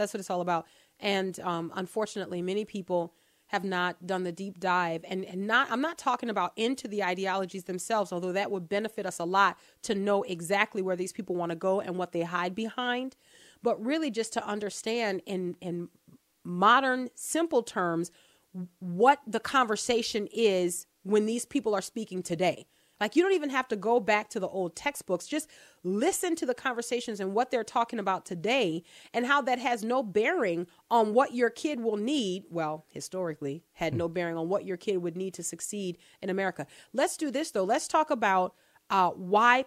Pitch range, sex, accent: 180-235 Hz, female, American